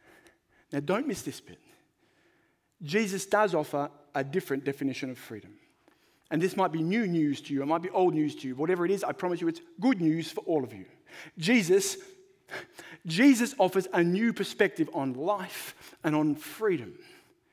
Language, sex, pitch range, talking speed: English, male, 155-235 Hz, 180 wpm